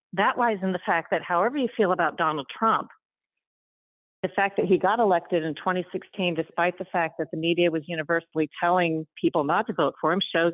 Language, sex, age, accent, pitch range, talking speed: English, female, 50-69, American, 160-195 Hz, 205 wpm